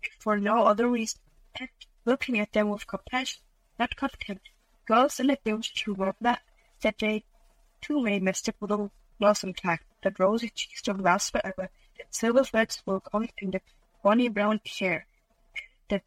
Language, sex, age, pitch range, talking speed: English, female, 30-49, 195-230 Hz, 170 wpm